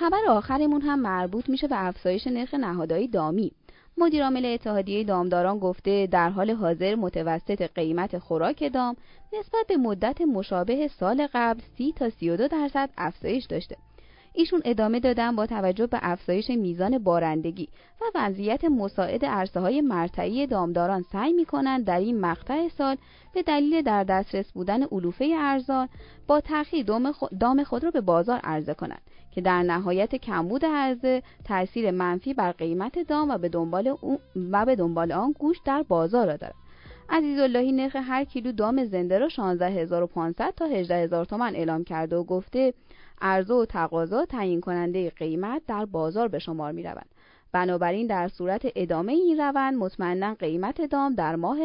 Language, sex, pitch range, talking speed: Persian, female, 180-270 Hz, 150 wpm